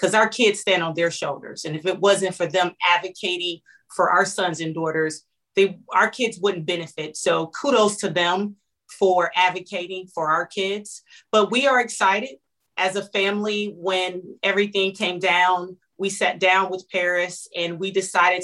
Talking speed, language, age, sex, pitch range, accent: 170 wpm, English, 30-49, female, 180-205 Hz, American